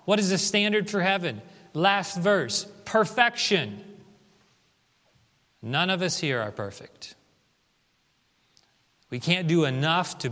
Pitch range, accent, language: 125-170 Hz, American, English